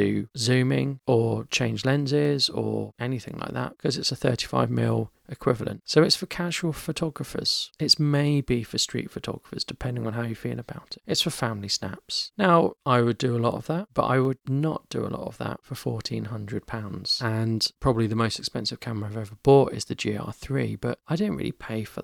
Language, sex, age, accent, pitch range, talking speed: English, male, 30-49, British, 115-140 Hz, 195 wpm